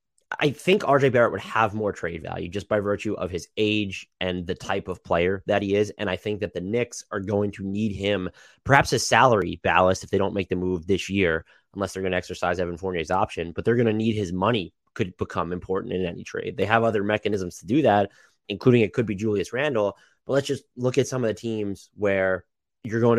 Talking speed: 240 wpm